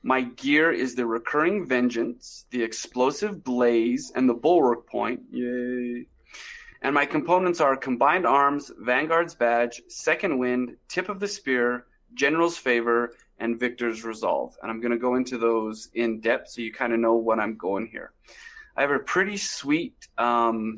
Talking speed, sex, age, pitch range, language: 165 wpm, male, 30-49, 115-155 Hz, English